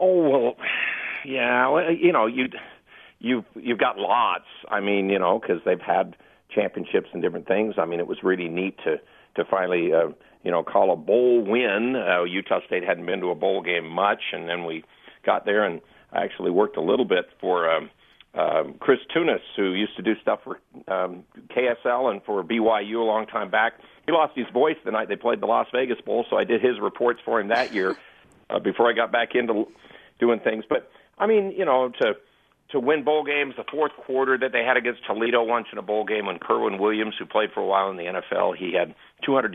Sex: male